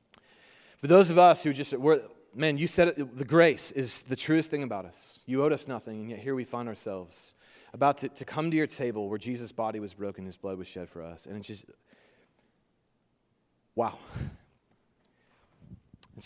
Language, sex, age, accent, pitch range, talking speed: English, male, 30-49, American, 105-140 Hz, 190 wpm